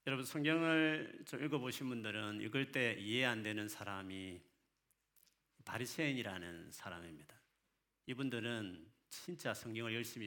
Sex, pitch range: male, 105-145 Hz